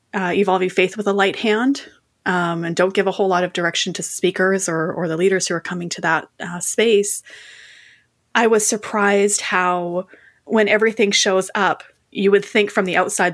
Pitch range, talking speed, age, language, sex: 175-205 Hz, 200 wpm, 30-49, English, female